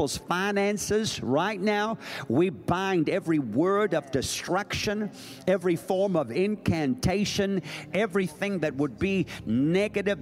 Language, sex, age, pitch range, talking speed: English, male, 50-69, 150-205 Hz, 105 wpm